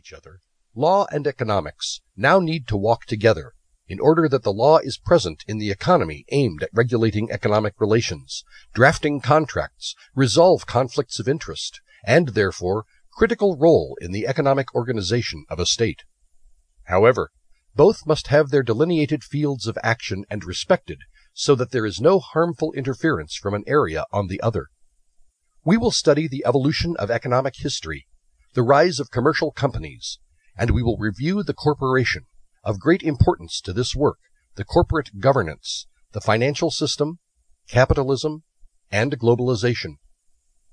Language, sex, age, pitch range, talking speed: English, male, 50-69, 95-150 Hz, 145 wpm